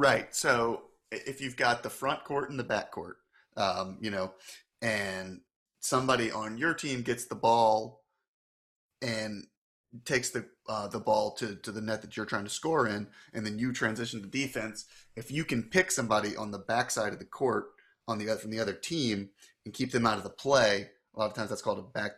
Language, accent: English, American